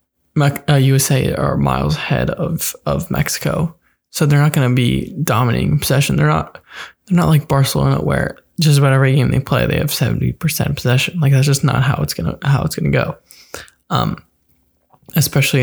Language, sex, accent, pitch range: English, male, American, 125-150 Hz